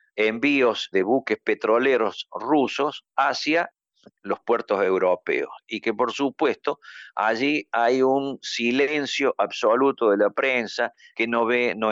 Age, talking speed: 50-69, 125 wpm